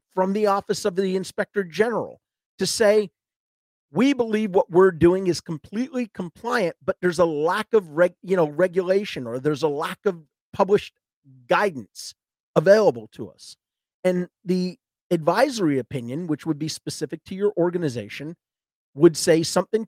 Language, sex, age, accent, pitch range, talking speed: English, male, 40-59, American, 145-195 Hz, 150 wpm